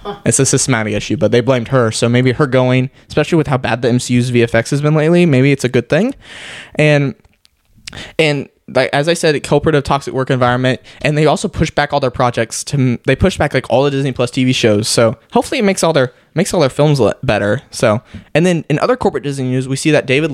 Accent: American